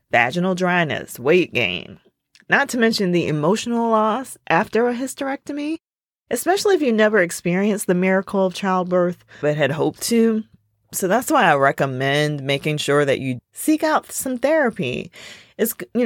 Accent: American